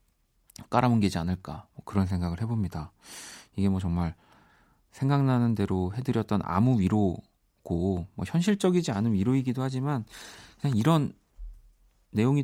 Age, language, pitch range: 40-59, Korean, 95-130 Hz